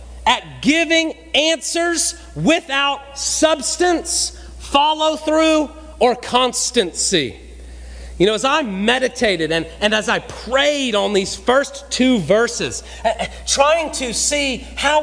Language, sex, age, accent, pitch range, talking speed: English, male, 40-59, American, 160-270 Hz, 110 wpm